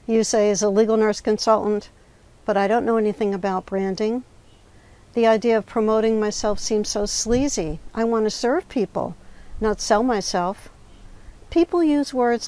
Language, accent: English, American